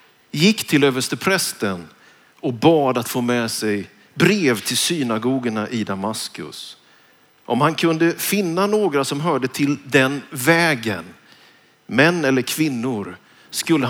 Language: Swedish